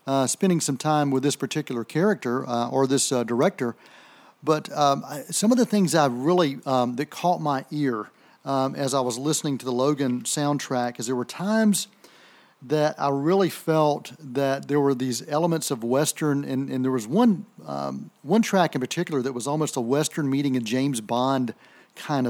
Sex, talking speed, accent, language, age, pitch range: male, 190 wpm, American, English, 40-59, 130-165 Hz